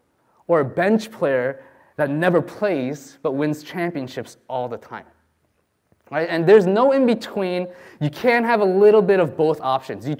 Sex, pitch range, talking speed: male, 150-205 Hz, 165 wpm